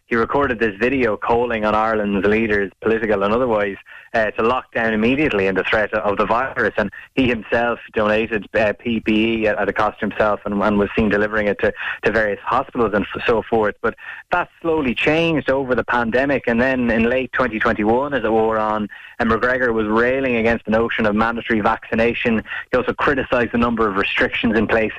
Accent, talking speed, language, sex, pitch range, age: Irish, 190 wpm, English, male, 105-120 Hz, 20-39